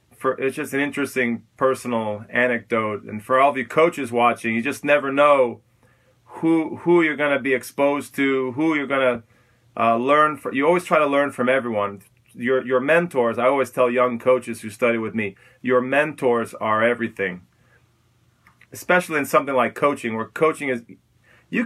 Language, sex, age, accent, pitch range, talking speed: English, male, 40-59, American, 120-160 Hz, 175 wpm